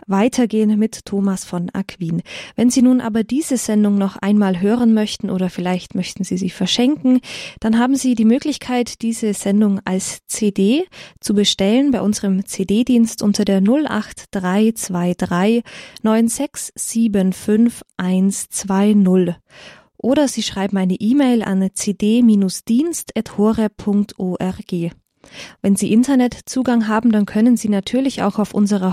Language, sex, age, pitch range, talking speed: German, female, 20-39, 195-230 Hz, 120 wpm